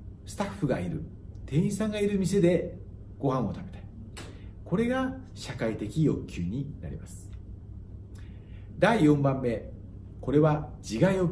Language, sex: Japanese, male